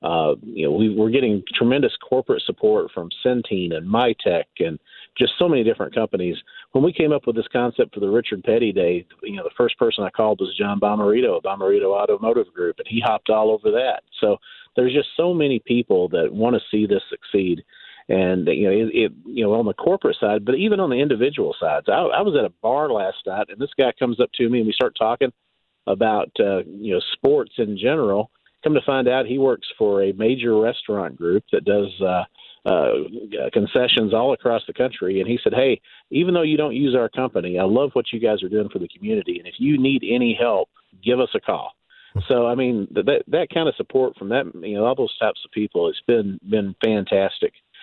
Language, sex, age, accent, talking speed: English, male, 40-59, American, 225 wpm